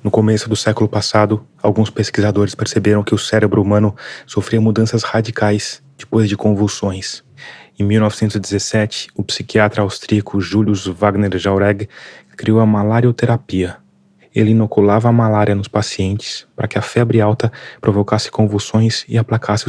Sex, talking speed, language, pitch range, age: male, 135 wpm, Portuguese, 100-110 Hz, 20-39